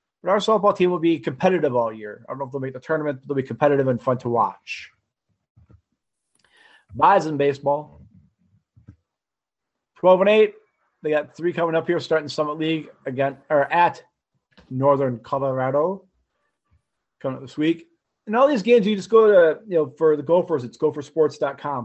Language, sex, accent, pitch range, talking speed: English, male, American, 130-170 Hz, 175 wpm